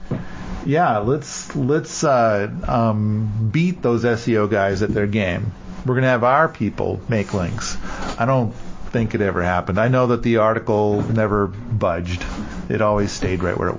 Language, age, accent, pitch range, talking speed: English, 40-59, American, 105-130 Hz, 165 wpm